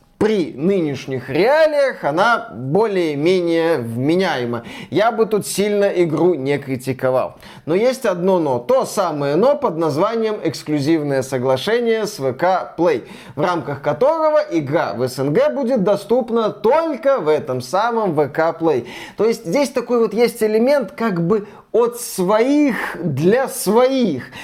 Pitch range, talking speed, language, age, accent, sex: 155-225 Hz, 135 wpm, Russian, 20-39, native, male